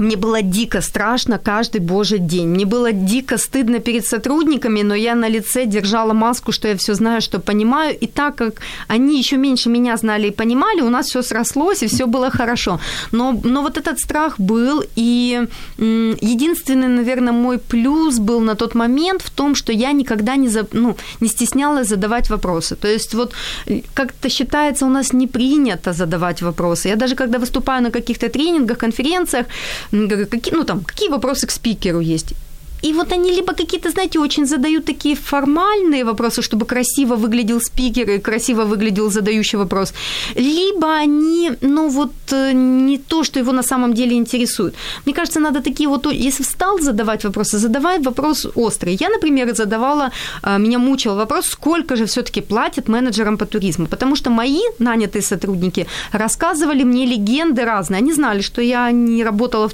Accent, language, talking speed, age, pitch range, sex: native, Ukrainian, 170 wpm, 30-49, 220-280 Hz, female